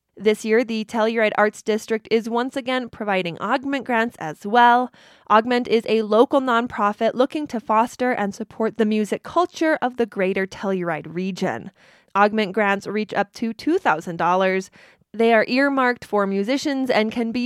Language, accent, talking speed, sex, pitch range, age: English, American, 160 wpm, female, 205-255 Hz, 20-39